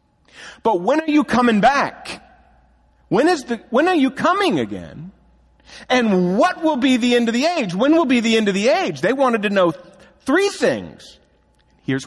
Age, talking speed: 50-69, 180 wpm